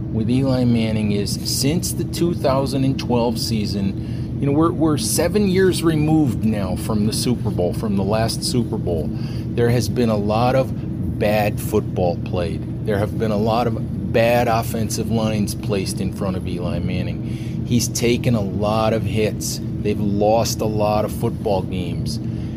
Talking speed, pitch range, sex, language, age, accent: 165 wpm, 105-125 Hz, male, English, 30-49, American